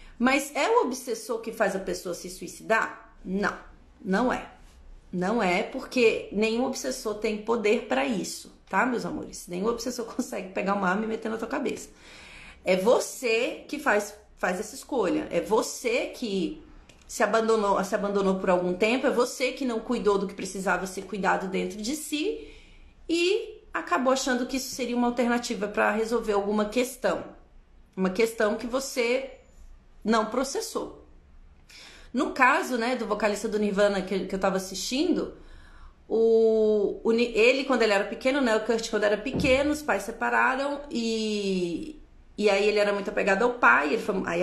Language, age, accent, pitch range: Portuguese, 30-49, Brazilian, 200-260 Hz